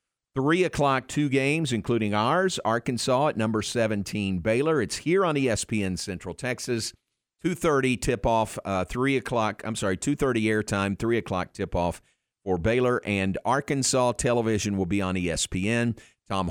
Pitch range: 100-130 Hz